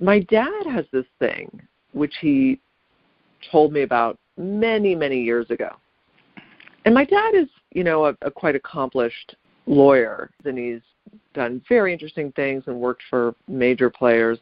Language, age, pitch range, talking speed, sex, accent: English, 40-59, 125-190 Hz, 150 wpm, female, American